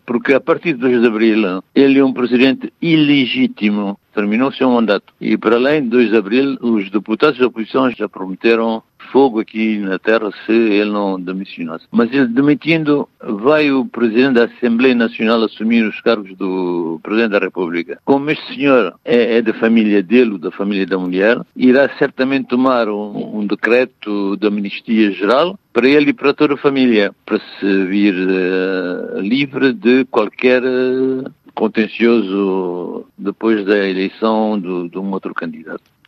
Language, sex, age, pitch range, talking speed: Portuguese, male, 60-79, 100-125 Hz, 160 wpm